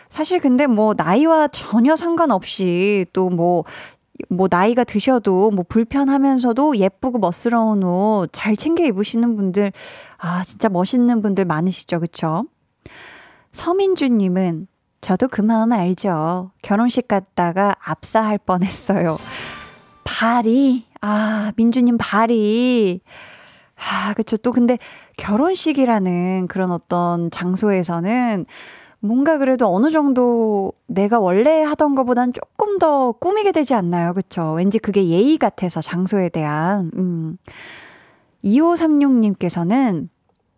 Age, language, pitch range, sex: 20-39, Korean, 185-255 Hz, female